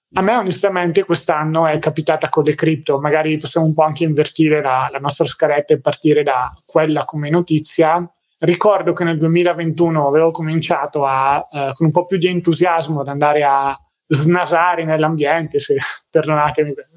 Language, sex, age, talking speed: Italian, male, 20-39, 165 wpm